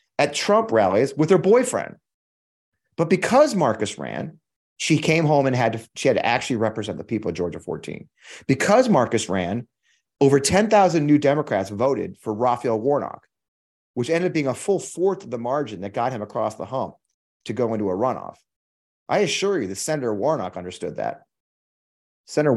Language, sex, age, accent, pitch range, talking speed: English, male, 30-49, American, 100-150 Hz, 180 wpm